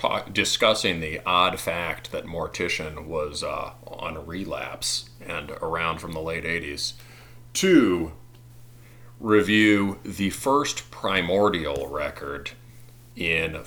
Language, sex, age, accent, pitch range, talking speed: English, male, 40-59, American, 90-120 Hz, 105 wpm